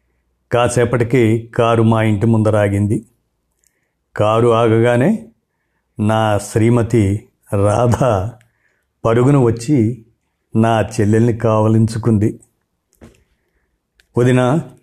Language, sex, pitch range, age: Telugu, male, 110-120 Hz, 50-69